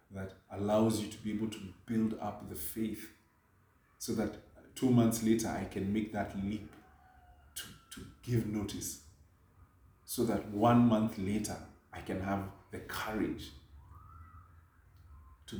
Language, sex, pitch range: English, male, 90-110 Hz